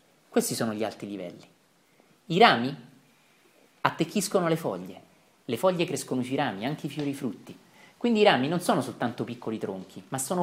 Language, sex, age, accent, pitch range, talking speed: Italian, male, 30-49, native, 125-175 Hz, 165 wpm